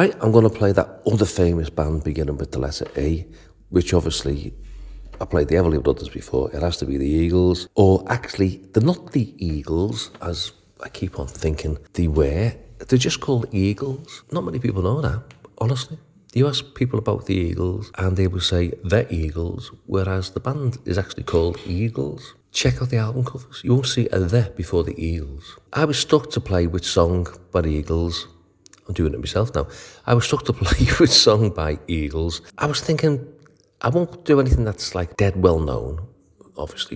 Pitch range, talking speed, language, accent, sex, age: 85-115 Hz, 195 wpm, English, British, male, 40-59